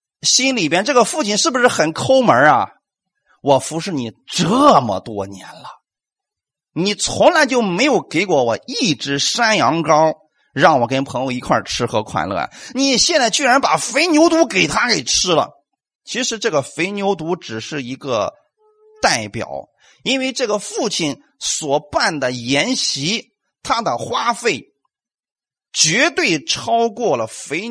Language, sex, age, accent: Chinese, male, 30-49, native